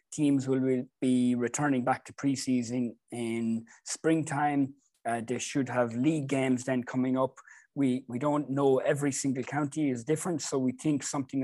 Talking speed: 165 wpm